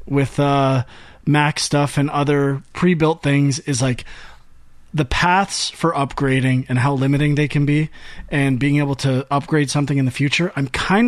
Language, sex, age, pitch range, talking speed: English, male, 30-49, 140-165 Hz, 170 wpm